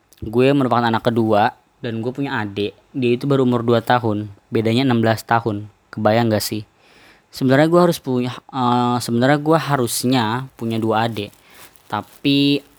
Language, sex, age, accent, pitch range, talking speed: Indonesian, female, 20-39, native, 110-125 Hz, 145 wpm